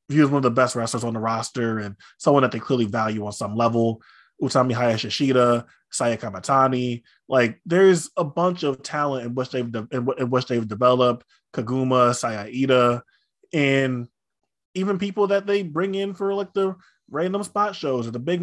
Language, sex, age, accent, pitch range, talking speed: English, male, 20-39, American, 120-150 Hz, 190 wpm